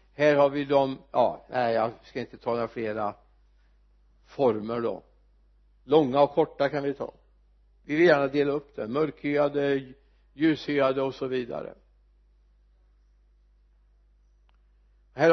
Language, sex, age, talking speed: Swedish, male, 60-79, 120 wpm